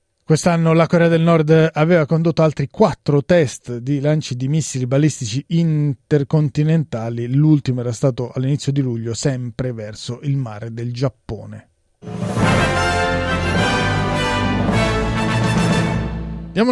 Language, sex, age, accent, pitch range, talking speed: Italian, male, 30-49, native, 130-165 Hz, 105 wpm